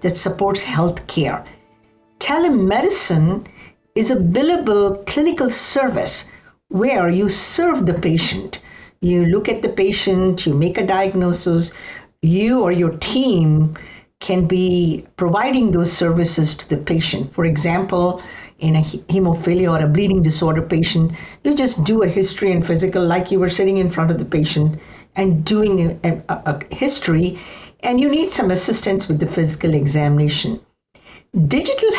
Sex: female